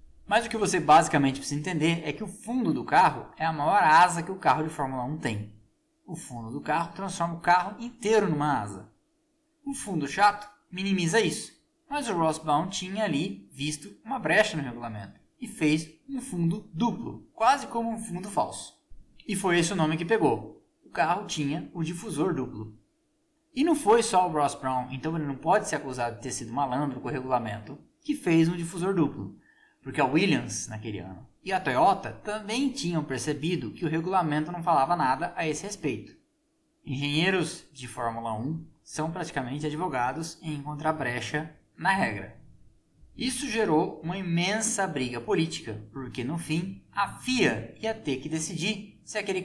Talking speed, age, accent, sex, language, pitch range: 175 wpm, 20-39, Brazilian, male, Portuguese, 140-205 Hz